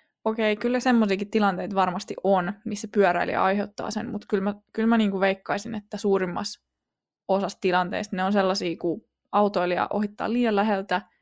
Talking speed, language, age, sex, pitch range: 165 wpm, Finnish, 20-39, female, 180-210 Hz